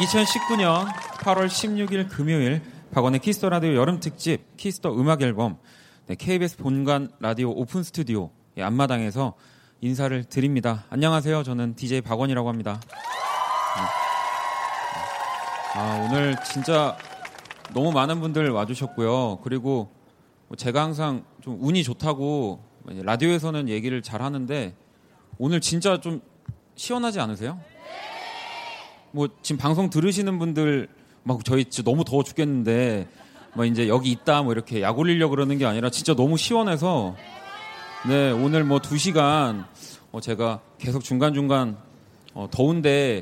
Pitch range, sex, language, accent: 120-160 Hz, male, Korean, native